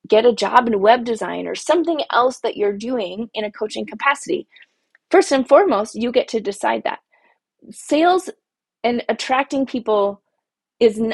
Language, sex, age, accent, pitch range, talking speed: English, female, 20-39, American, 210-275 Hz, 155 wpm